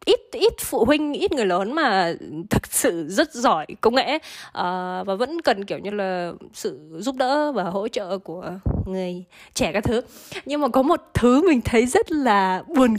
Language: Vietnamese